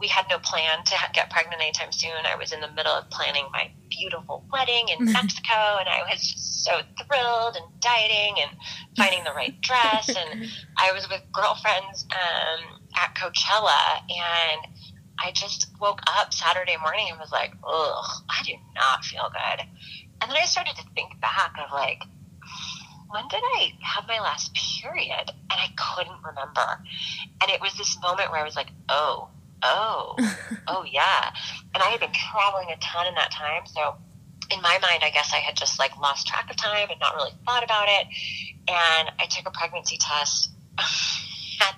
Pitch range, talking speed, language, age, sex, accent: 160-225 Hz, 185 wpm, English, 30-49, female, American